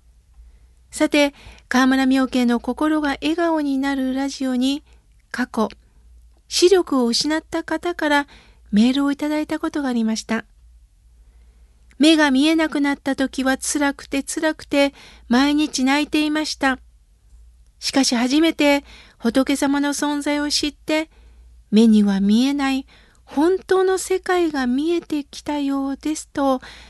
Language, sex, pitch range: Japanese, female, 220-300 Hz